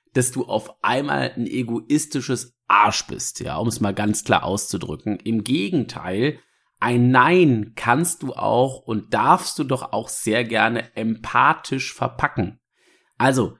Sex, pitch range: male, 130-170 Hz